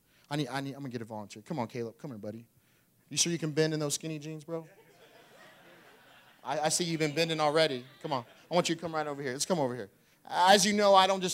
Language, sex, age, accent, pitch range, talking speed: English, male, 30-49, American, 140-215 Hz, 280 wpm